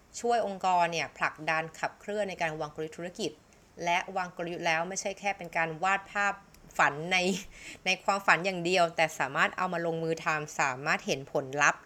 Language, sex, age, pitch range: Thai, female, 20-39, 155-190 Hz